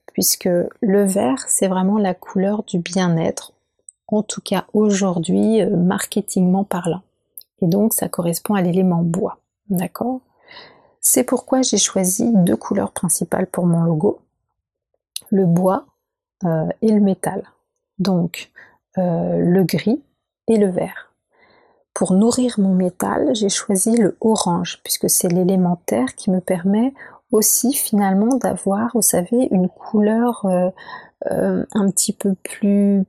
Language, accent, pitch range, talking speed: French, French, 185-230 Hz, 130 wpm